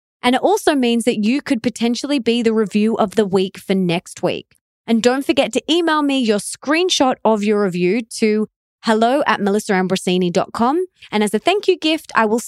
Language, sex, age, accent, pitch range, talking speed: English, female, 20-39, Australian, 180-240 Hz, 190 wpm